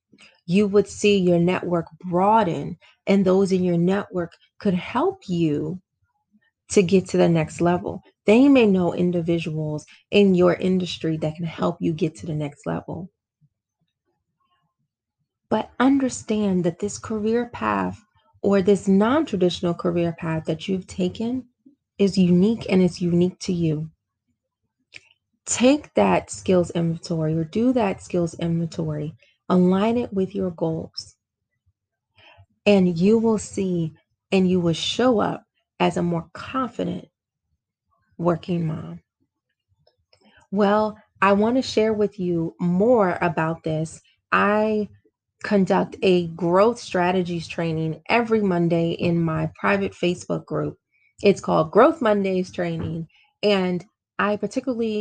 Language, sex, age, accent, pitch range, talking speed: English, female, 30-49, American, 165-205 Hz, 125 wpm